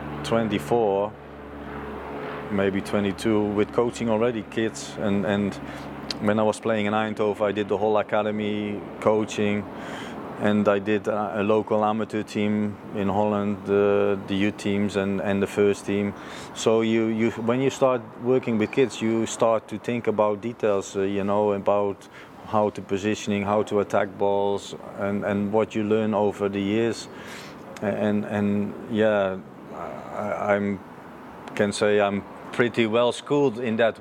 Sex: male